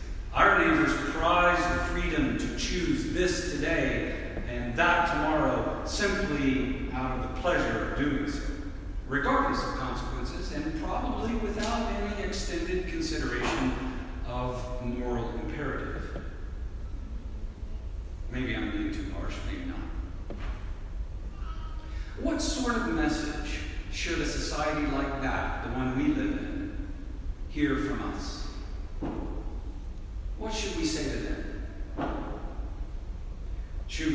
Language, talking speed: English, 110 wpm